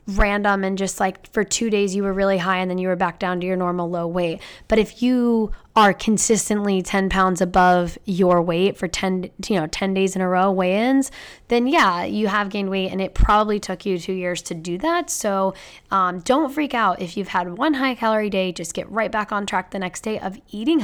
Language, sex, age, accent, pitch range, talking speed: English, female, 10-29, American, 185-230 Hz, 235 wpm